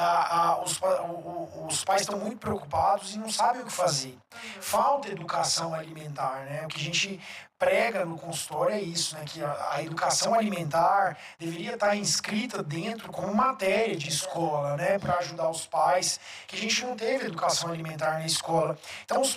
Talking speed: 185 wpm